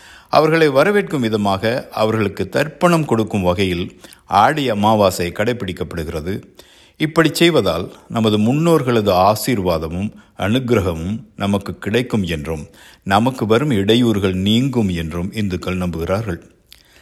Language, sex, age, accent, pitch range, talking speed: Tamil, male, 60-79, native, 95-125 Hz, 90 wpm